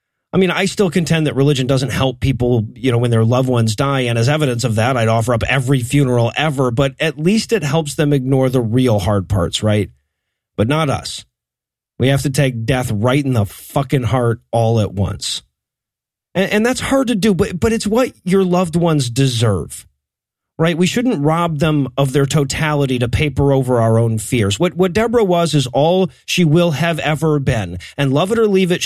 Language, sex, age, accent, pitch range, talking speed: English, male, 30-49, American, 125-175 Hz, 210 wpm